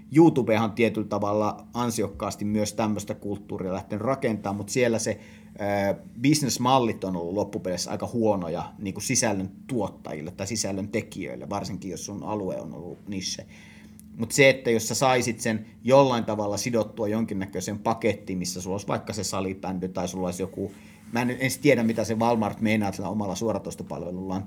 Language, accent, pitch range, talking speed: Finnish, native, 100-115 Hz, 160 wpm